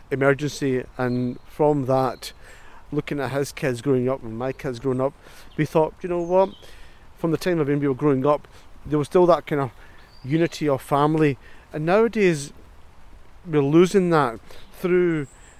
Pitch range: 135-170 Hz